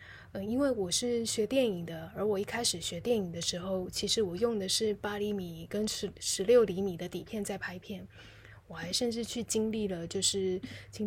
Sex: female